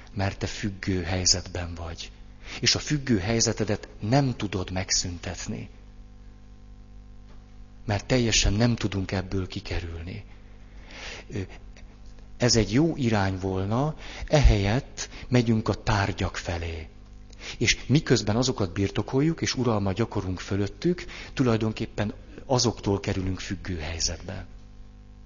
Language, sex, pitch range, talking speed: Hungarian, male, 95-110 Hz, 95 wpm